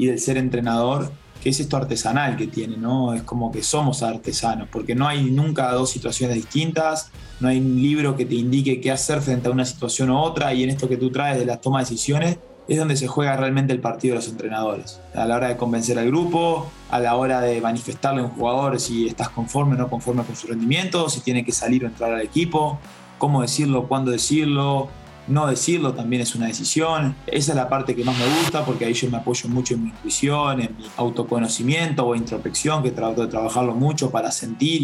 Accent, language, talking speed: Argentinian, Spanish, 225 wpm